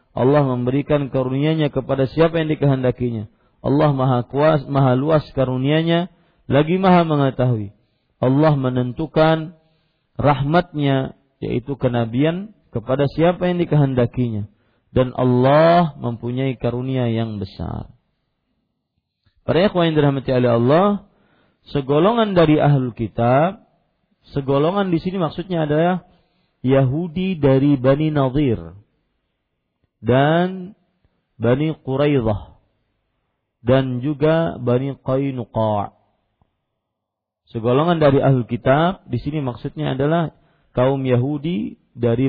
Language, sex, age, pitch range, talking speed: Malay, male, 40-59, 120-160 Hz, 95 wpm